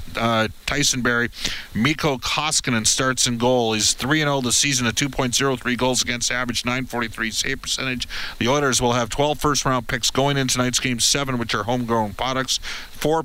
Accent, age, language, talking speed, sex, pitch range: American, 40-59, English, 170 wpm, male, 115-135 Hz